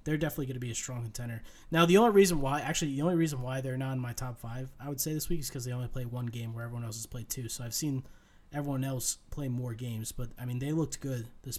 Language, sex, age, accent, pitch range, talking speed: English, male, 20-39, American, 125-155 Hz, 295 wpm